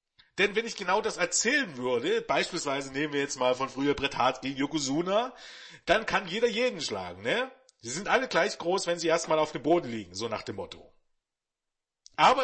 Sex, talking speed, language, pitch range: male, 200 wpm, German, 150-220 Hz